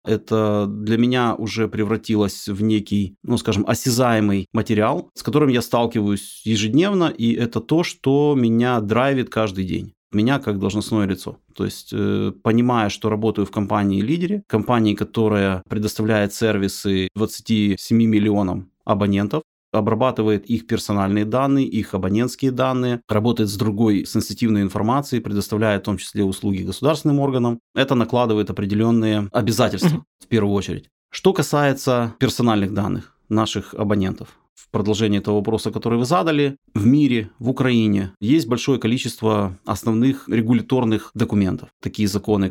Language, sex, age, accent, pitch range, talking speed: Ukrainian, male, 30-49, native, 105-120 Hz, 135 wpm